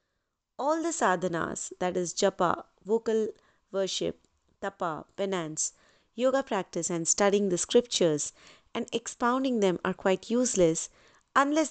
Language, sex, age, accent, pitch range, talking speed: English, female, 30-49, Indian, 175-225 Hz, 120 wpm